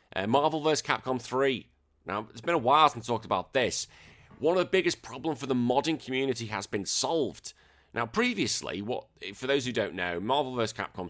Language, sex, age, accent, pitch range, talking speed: English, male, 30-49, British, 95-125 Hz, 205 wpm